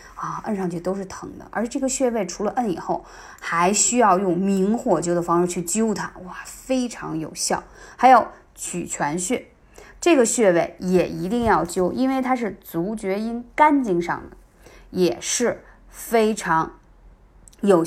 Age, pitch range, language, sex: 20-39, 180-255 Hz, Chinese, female